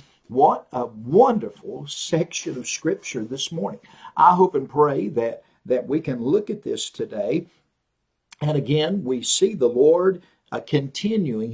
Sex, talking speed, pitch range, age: male, 145 wpm, 135-200 Hz, 50-69